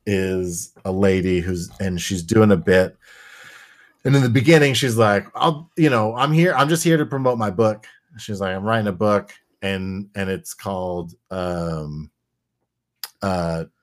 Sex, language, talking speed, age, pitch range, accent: male, English, 170 wpm, 30-49, 95-115 Hz, American